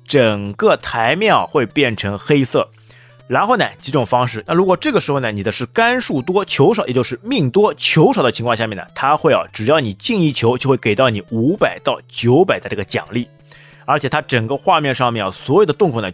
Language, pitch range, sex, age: Chinese, 120-170 Hz, male, 30-49